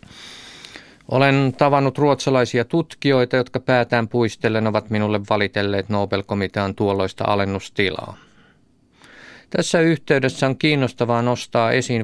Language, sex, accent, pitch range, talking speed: Finnish, male, native, 105-130 Hz, 100 wpm